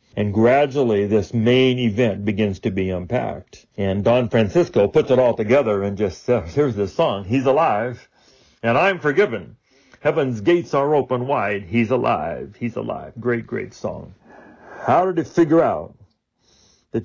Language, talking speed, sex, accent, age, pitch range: English, 160 wpm, male, American, 60-79, 110-140 Hz